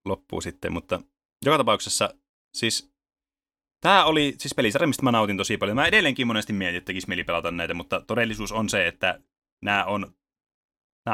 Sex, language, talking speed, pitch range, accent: male, Finnish, 145 wpm, 90-120 Hz, native